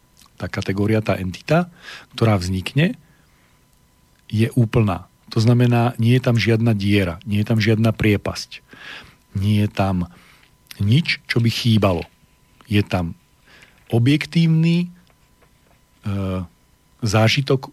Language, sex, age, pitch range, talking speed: Slovak, male, 40-59, 100-125 Hz, 105 wpm